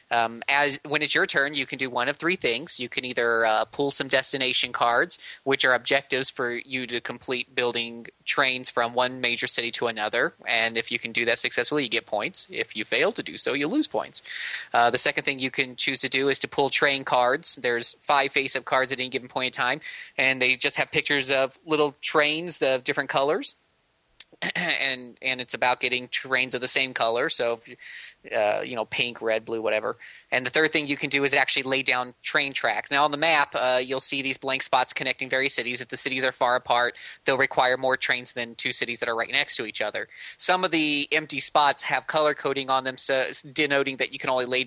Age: 20-39